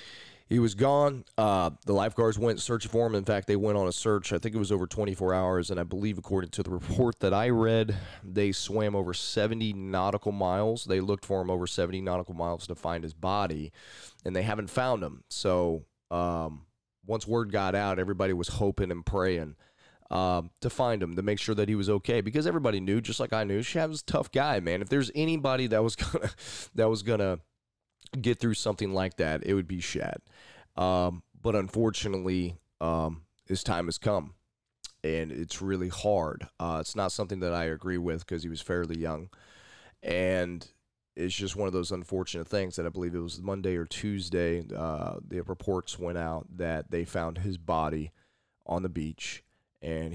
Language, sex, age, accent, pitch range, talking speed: English, male, 30-49, American, 85-105 Hz, 195 wpm